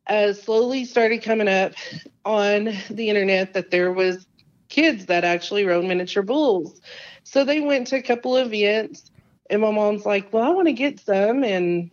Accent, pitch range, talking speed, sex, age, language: American, 180-215 Hz, 180 wpm, female, 40-59, English